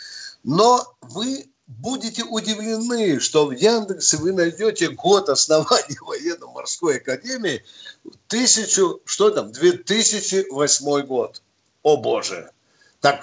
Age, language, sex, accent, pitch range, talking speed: 50-69, Russian, male, native, 145-230 Hz, 85 wpm